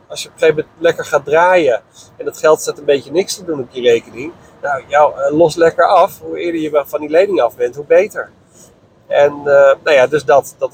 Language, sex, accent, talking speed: Dutch, male, Dutch, 235 wpm